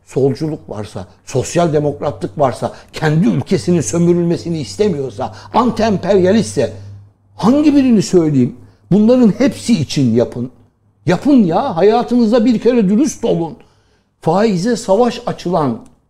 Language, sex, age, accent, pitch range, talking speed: Turkish, male, 60-79, native, 155-225 Hz, 100 wpm